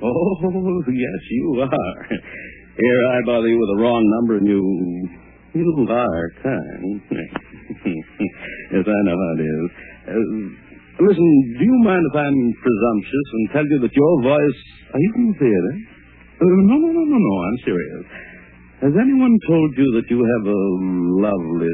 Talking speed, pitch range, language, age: 160 wpm, 85-145 Hz, English, 60-79